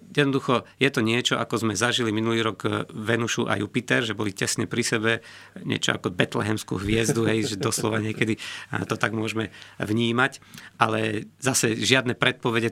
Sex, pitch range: male, 110-125 Hz